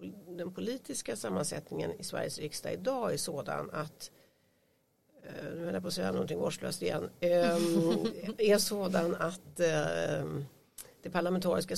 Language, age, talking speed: Swedish, 60-79, 105 wpm